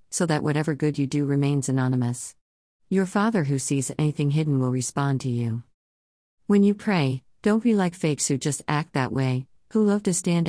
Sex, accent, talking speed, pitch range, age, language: female, American, 195 wpm, 130-175 Hz, 50-69, English